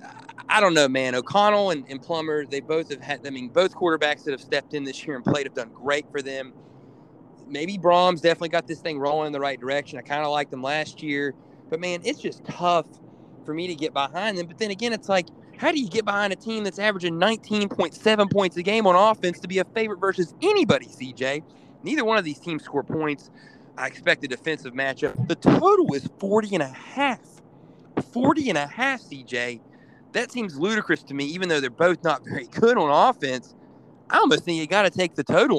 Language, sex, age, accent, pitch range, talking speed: English, male, 30-49, American, 140-190 Hz, 210 wpm